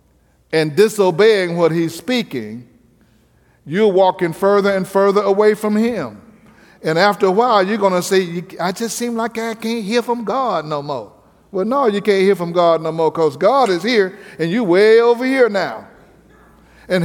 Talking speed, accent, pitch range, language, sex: 180 wpm, American, 165-215 Hz, English, male